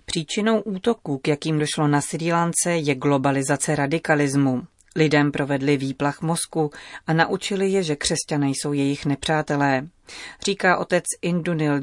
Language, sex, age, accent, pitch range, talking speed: Czech, female, 30-49, native, 145-165 Hz, 125 wpm